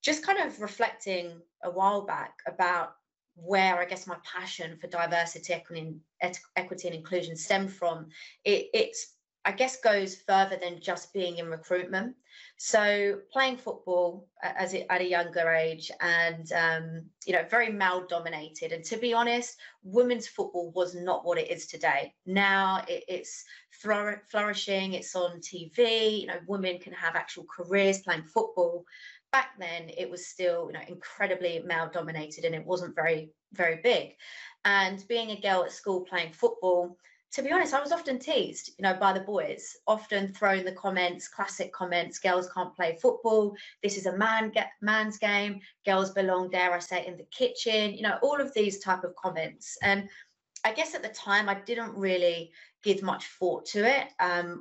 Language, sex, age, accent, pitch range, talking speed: English, female, 30-49, British, 175-215 Hz, 175 wpm